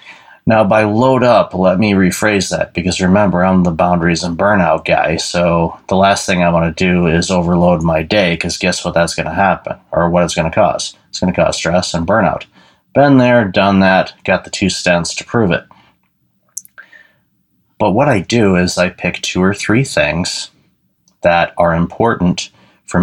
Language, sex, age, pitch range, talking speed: English, male, 30-49, 85-100 Hz, 195 wpm